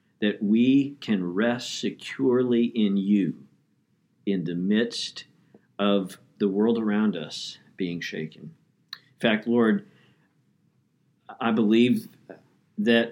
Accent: American